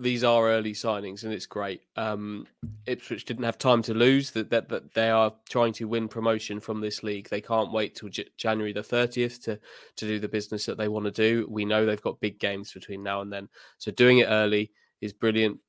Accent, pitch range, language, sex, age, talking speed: British, 105-115 Hz, English, male, 20-39, 230 wpm